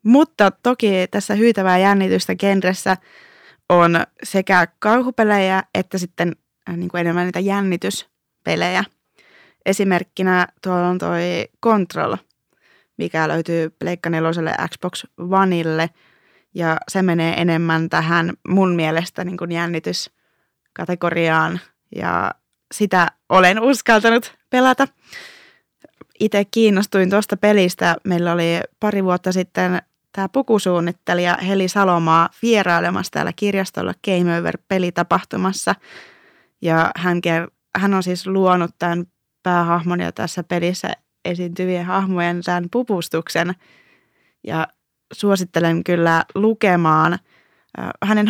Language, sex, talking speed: Finnish, female, 95 wpm